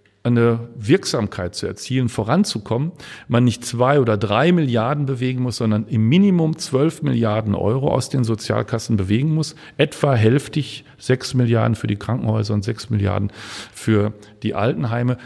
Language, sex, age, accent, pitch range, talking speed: German, male, 40-59, German, 110-140 Hz, 145 wpm